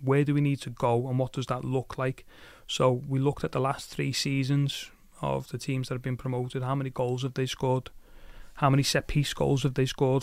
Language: Danish